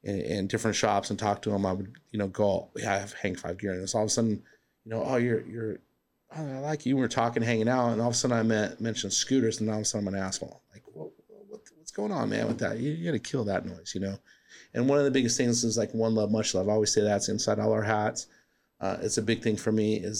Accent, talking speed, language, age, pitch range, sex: American, 305 wpm, English, 40-59, 105-120 Hz, male